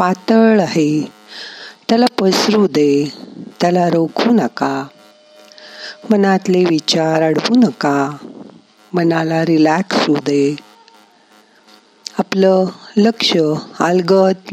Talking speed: 75 wpm